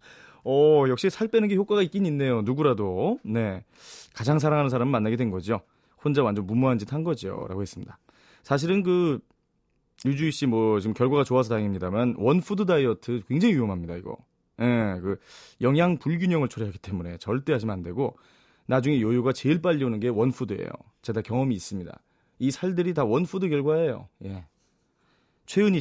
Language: Korean